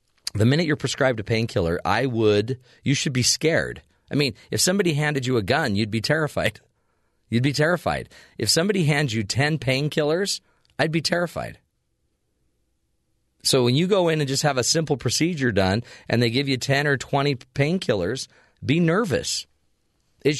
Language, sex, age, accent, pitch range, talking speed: English, male, 40-59, American, 105-150 Hz, 170 wpm